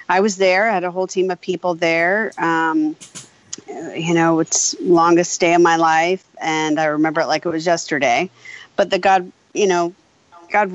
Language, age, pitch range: English, 40-59, 160-175 Hz